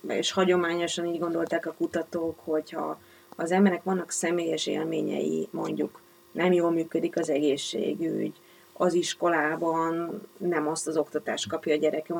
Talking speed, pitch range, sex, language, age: 135 wpm, 160-185 Hz, female, Hungarian, 30-49